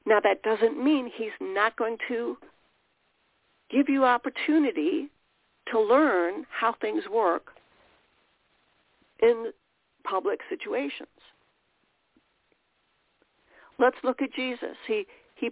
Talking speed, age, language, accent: 95 wpm, 60-79, English, American